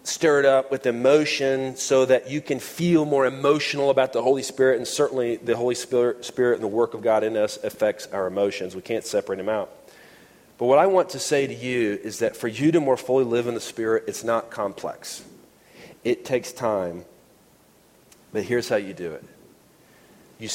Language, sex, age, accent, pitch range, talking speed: English, male, 40-59, American, 120-145 Hz, 200 wpm